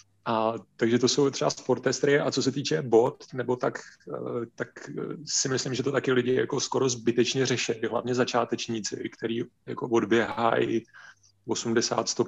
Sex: male